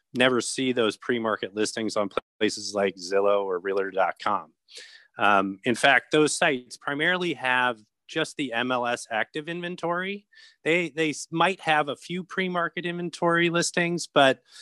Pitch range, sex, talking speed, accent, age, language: 110-170 Hz, male, 135 wpm, American, 30-49, English